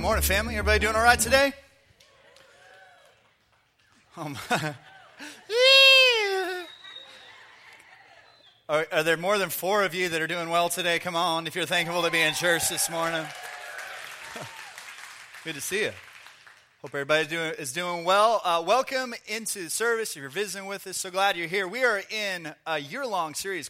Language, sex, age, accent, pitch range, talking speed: English, male, 30-49, American, 155-195 Hz, 165 wpm